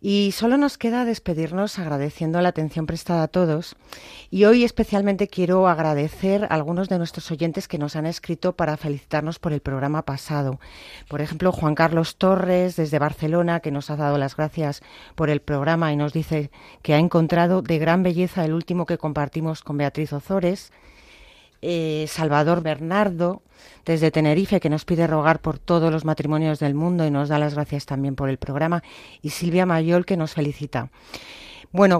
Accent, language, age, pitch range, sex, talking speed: Spanish, Spanish, 40-59, 150-175 Hz, female, 175 wpm